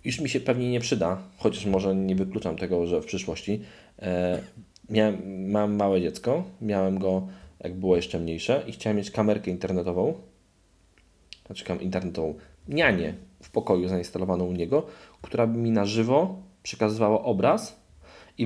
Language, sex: Polish, male